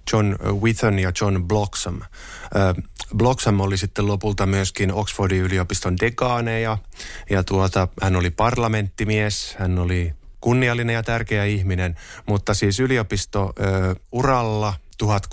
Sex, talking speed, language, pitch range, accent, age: male, 115 wpm, Finnish, 95-110 Hz, native, 20-39